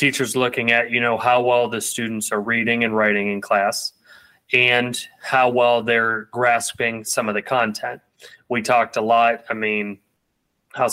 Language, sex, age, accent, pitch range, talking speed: English, male, 20-39, American, 105-120 Hz, 170 wpm